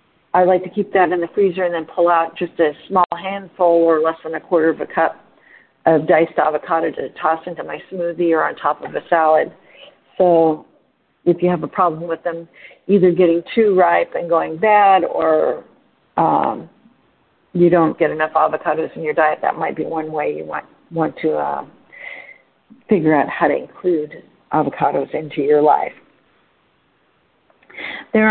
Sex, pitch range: female, 165-205 Hz